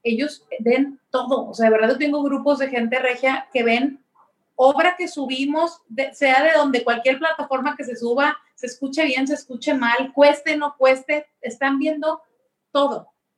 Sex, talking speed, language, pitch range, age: female, 175 wpm, Spanish, 210-270 Hz, 30-49